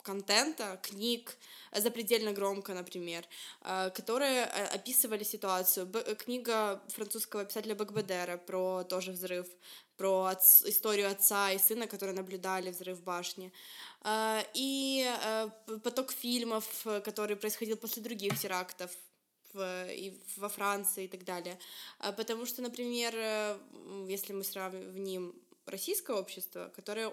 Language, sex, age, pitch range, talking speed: Russian, female, 20-39, 190-230 Hz, 115 wpm